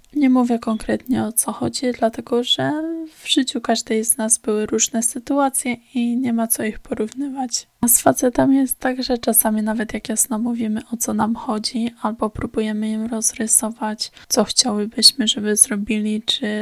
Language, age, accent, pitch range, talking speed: Polish, 10-29, native, 215-245 Hz, 165 wpm